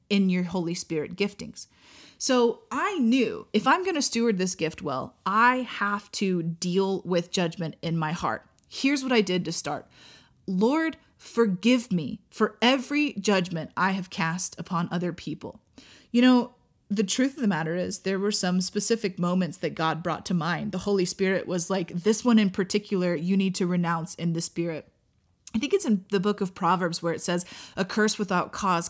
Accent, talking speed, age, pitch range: American, 190 wpm, 30-49, 175-220 Hz